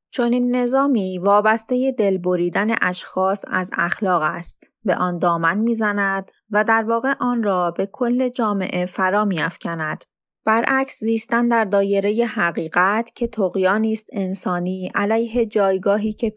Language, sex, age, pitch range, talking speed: Persian, female, 30-49, 180-230 Hz, 125 wpm